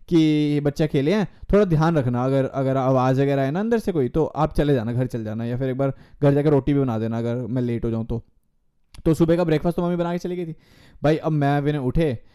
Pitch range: 130-180 Hz